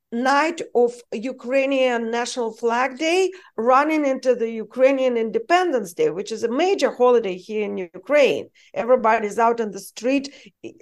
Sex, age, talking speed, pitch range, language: female, 50-69, 140 wpm, 215-300 Hz, English